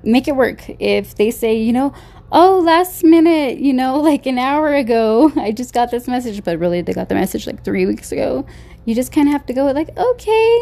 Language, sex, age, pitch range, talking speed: English, female, 10-29, 185-245 Hz, 230 wpm